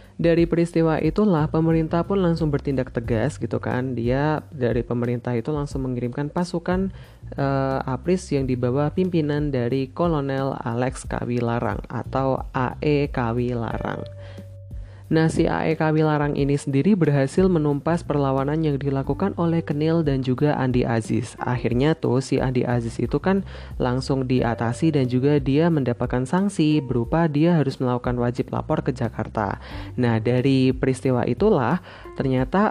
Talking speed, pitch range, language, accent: 135 wpm, 125-160 Hz, Indonesian, native